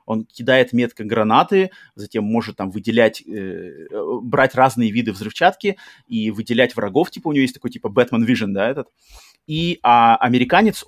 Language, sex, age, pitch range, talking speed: Russian, male, 30-49, 115-145 Hz, 160 wpm